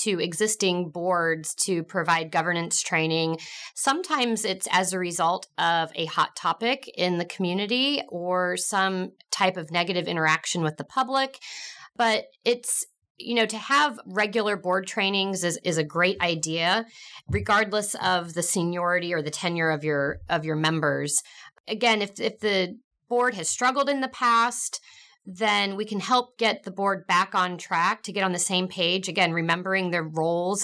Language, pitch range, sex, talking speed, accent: English, 170-215 Hz, female, 165 wpm, American